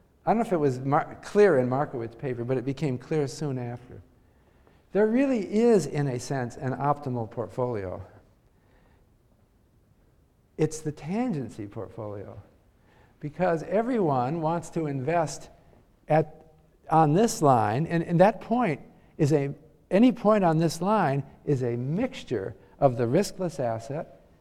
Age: 50-69